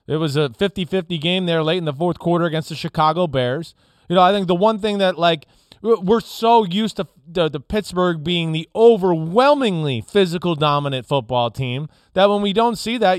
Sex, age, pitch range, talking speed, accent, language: male, 30-49, 155-205 Hz, 200 wpm, American, English